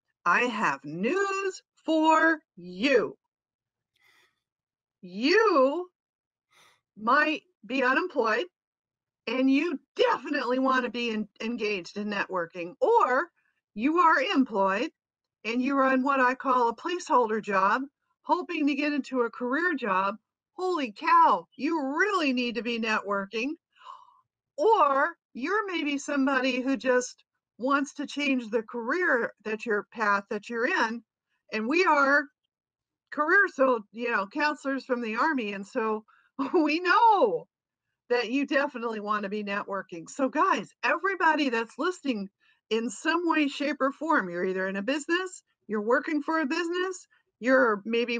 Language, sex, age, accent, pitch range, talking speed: English, female, 50-69, American, 230-320 Hz, 135 wpm